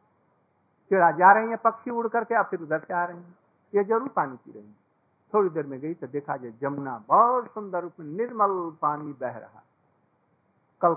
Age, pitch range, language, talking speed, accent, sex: 50-69, 155-195 Hz, Hindi, 190 wpm, native, male